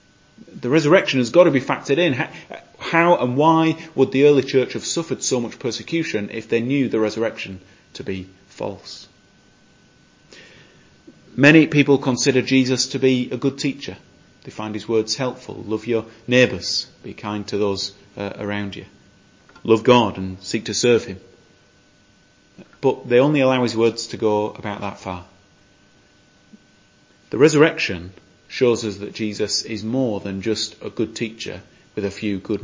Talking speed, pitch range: 160 wpm, 100-130 Hz